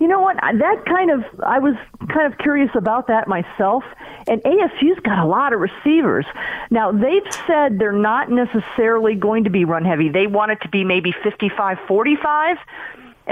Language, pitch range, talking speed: English, 180-225 Hz, 175 wpm